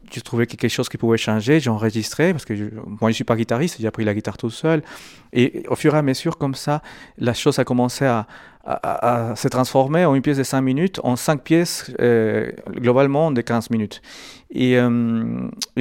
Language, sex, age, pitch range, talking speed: French, male, 40-59, 110-135 Hz, 220 wpm